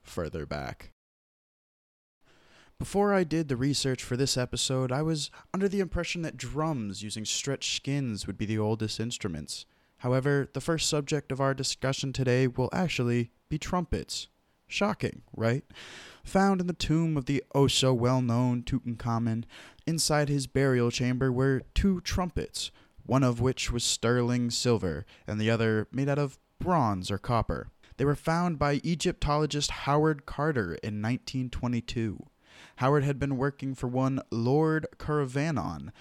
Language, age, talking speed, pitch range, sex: English, 20-39, 145 wpm, 120-150 Hz, male